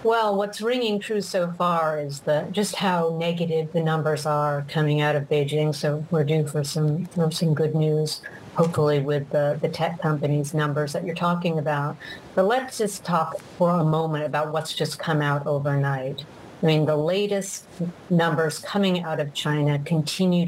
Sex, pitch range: female, 150-175 Hz